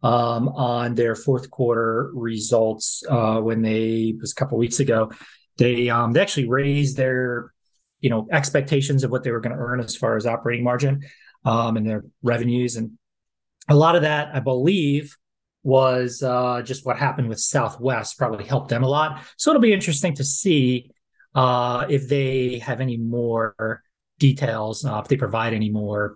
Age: 30-49